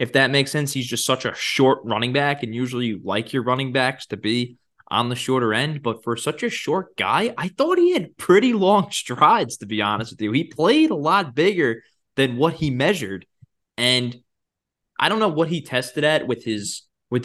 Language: English